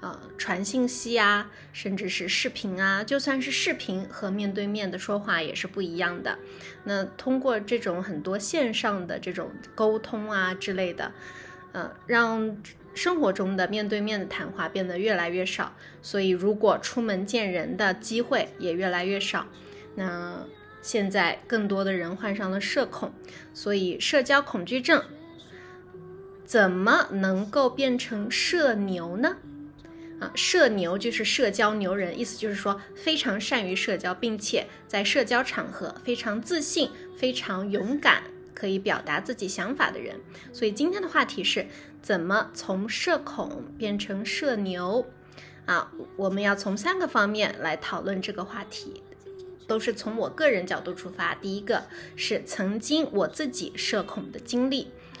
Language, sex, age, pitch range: English, female, 20-39, 190-255 Hz